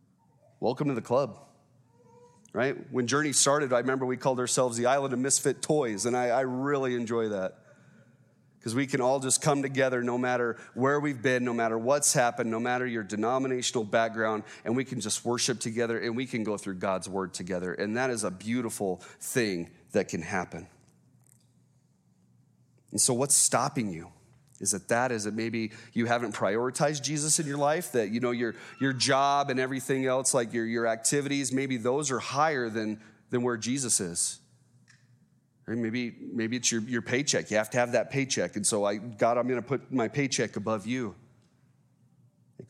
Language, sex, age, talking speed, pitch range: English, male, 30-49, 185 wpm, 110-130 Hz